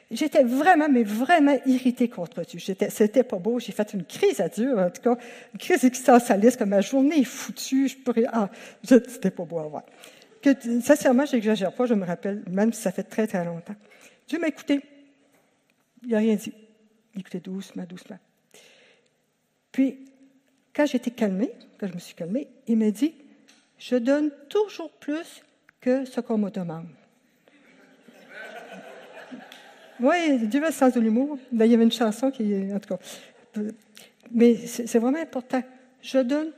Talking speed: 170 wpm